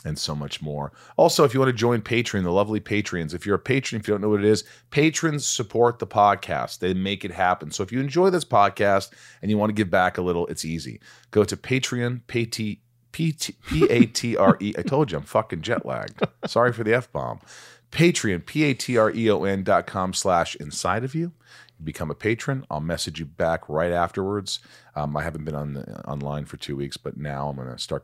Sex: male